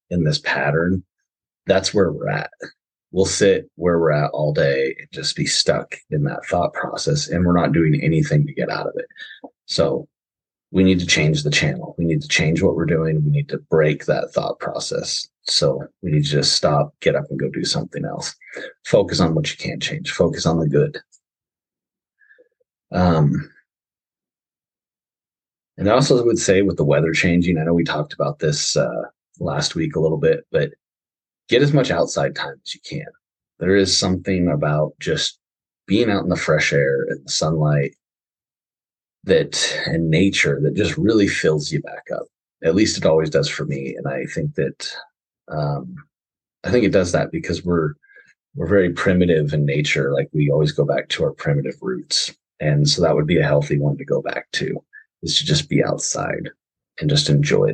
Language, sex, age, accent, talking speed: English, male, 30-49, American, 190 wpm